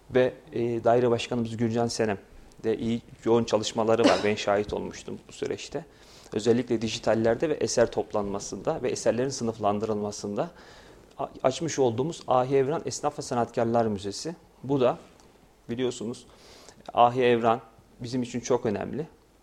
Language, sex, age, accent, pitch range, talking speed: Turkish, male, 40-59, native, 115-135 Hz, 125 wpm